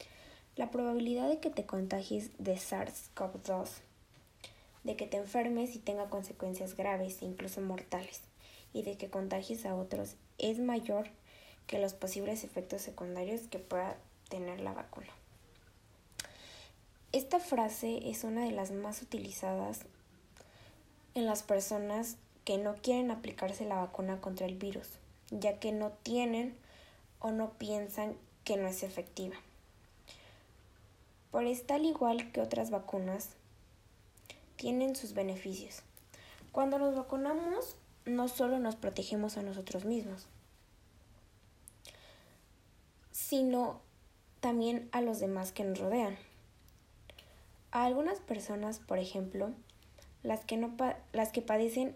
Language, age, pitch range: Spanish, 20-39, 185-230 Hz